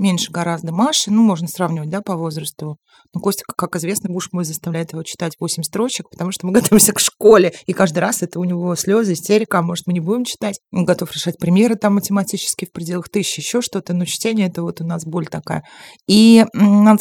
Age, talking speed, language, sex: 30-49, 210 wpm, Russian, female